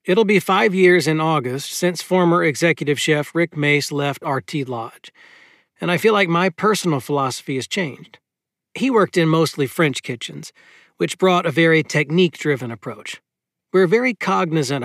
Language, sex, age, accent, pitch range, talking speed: English, male, 40-59, American, 145-180 Hz, 160 wpm